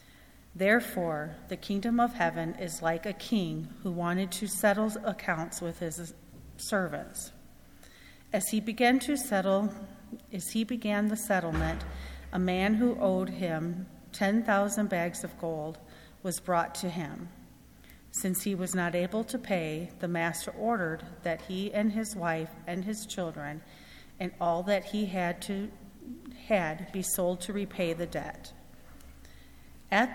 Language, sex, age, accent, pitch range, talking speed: English, female, 40-59, American, 170-210 Hz, 145 wpm